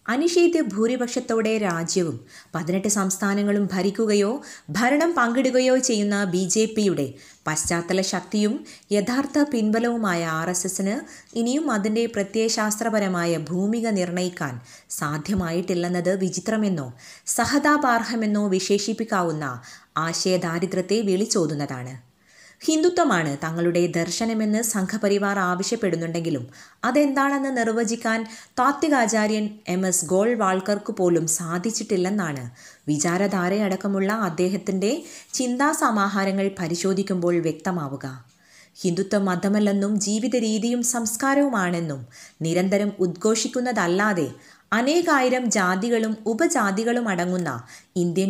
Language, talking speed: Malayalam, 75 wpm